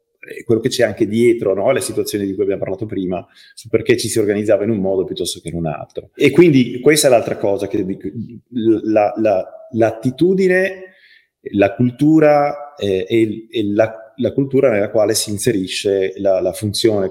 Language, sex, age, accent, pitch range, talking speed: Italian, male, 30-49, native, 110-140 Hz, 180 wpm